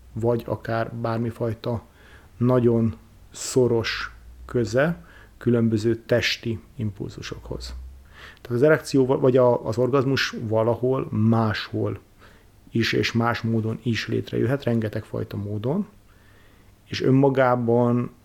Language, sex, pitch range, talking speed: Hungarian, male, 110-120 Hz, 90 wpm